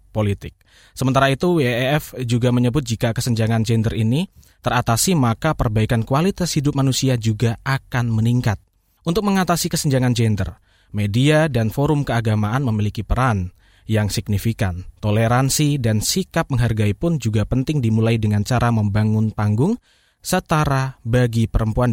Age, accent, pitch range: 20-39, native, 110-135 Hz